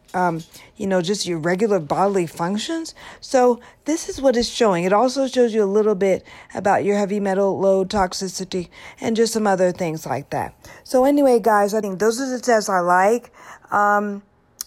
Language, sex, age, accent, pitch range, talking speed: English, female, 50-69, American, 180-215 Hz, 190 wpm